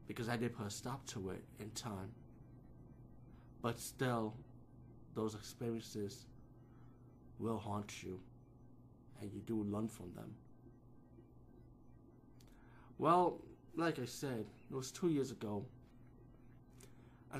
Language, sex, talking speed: English, male, 115 wpm